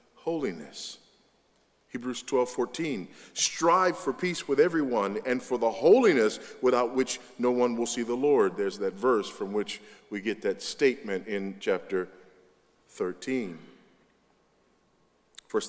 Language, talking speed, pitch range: English, 130 wpm, 105-130 Hz